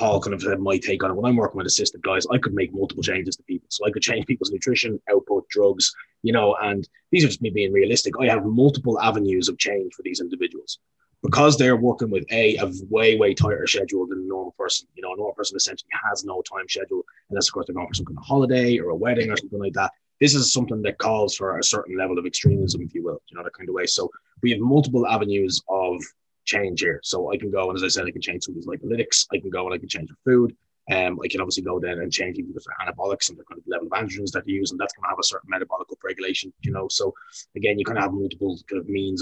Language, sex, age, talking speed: English, male, 20-39, 275 wpm